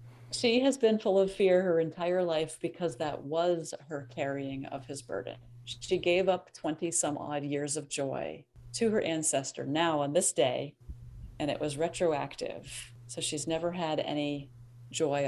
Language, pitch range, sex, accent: English, 130-175 Hz, female, American